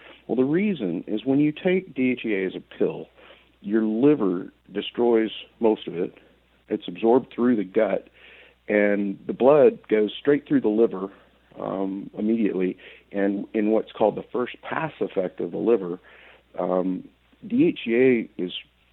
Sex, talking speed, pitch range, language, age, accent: male, 145 wpm, 90-120 Hz, English, 50-69, American